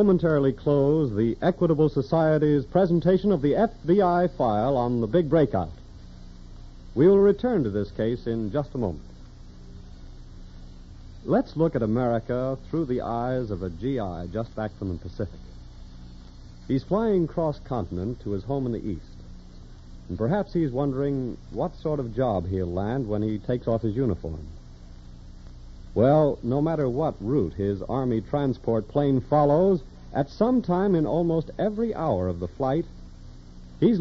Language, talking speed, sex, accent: English, 150 wpm, male, American